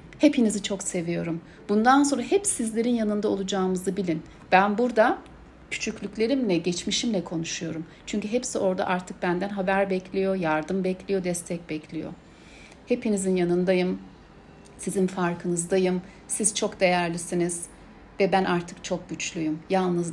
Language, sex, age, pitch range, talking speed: Turkish, female, 60-79, 175-225 Hz, 115 wpm